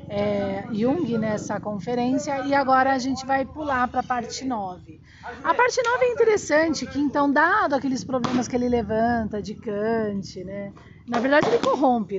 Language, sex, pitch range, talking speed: Portuguese, female, 230-310 Hz, 165 wpm